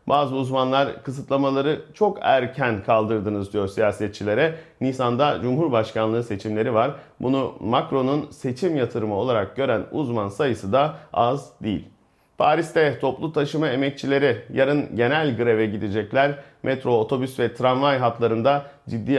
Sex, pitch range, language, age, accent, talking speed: male, 120-150 Hz, Turkish, 40-59, native, 115 wpm